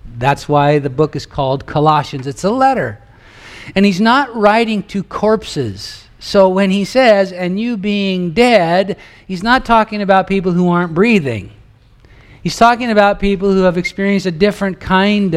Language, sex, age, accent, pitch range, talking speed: English, male, 50-69, American, 135-195 Hz, 165 wpm